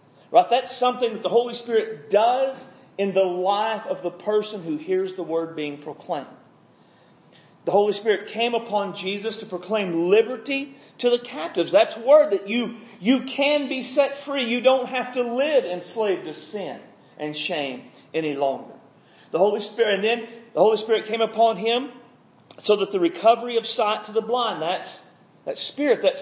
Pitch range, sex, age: 175-235 Hz, male, 40-59